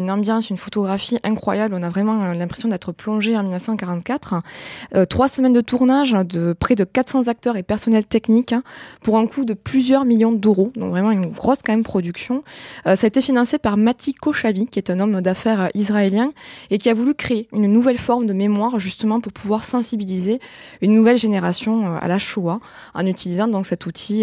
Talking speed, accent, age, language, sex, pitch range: 195 wpm, French, 20-39, French, female, 180-225 Hz